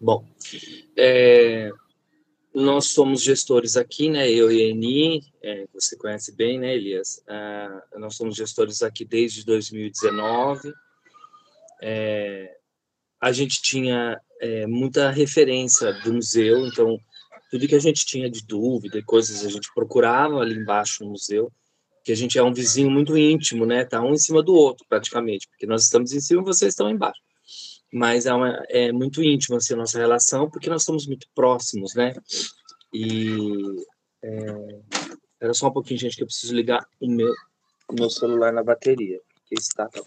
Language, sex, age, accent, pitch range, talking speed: Portuguese, male, 20-39, Brazilian, 115-150 Hz, 170 wpm